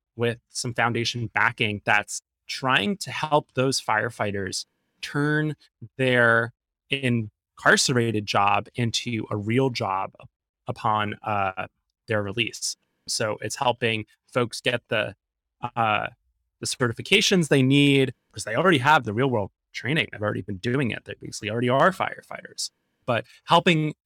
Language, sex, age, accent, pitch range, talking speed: English, male, 20-39, American, 105-130 Hz, 130 wpm